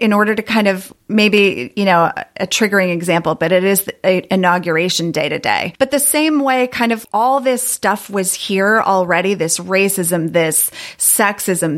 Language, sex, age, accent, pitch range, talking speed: English, female, 30-49, American, 190-240 Hz, 175 wpm